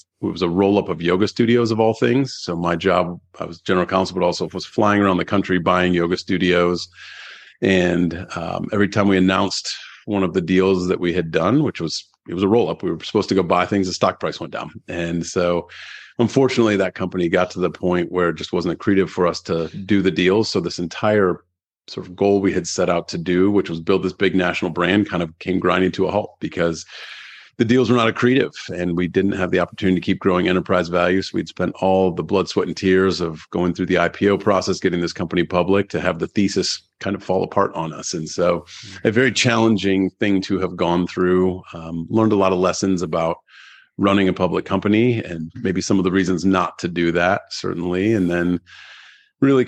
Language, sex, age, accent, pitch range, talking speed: English, male, 40-59, American, 90-100 Hz, 225 wpm